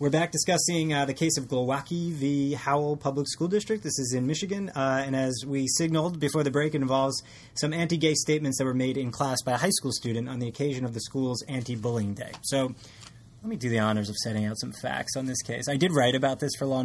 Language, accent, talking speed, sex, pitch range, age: English, American, 245 wpm, male, 115-145 Hz, 20-39